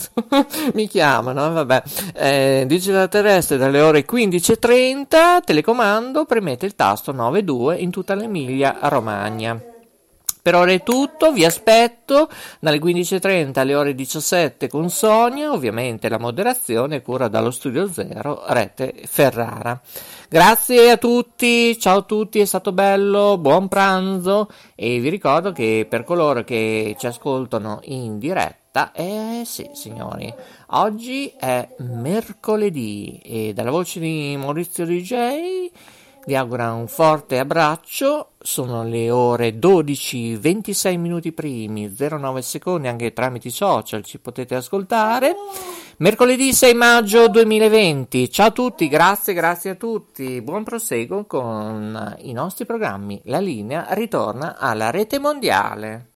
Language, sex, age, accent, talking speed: Italian, male, 50-69, native, 125 wpm